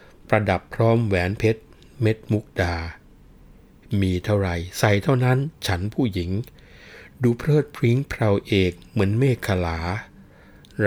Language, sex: Thai, male